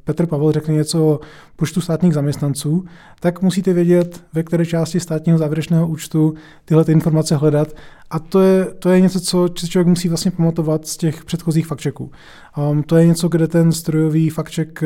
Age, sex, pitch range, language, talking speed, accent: 20-39, male, 150-175 Hz, Czech, 180 wpm, native